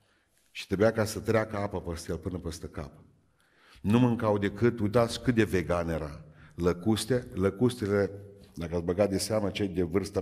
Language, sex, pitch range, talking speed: Romanian, male, 90-115 Hz, 165 wpm